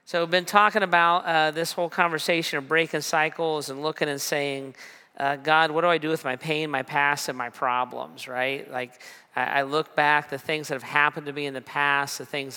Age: 40-59